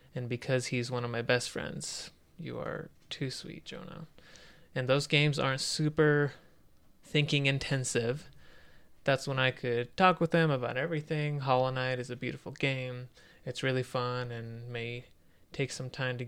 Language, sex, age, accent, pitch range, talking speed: English, male, 20-39, American, 120-145 Hz, 160 wpm